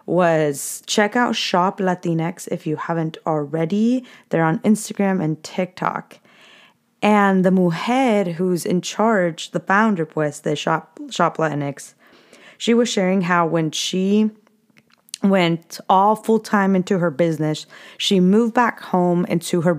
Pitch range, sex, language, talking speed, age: 165-210 Hz, female, English, 140 wpm, 20-39